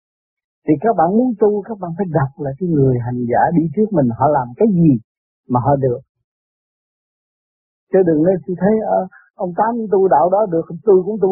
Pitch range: 155-245 Hz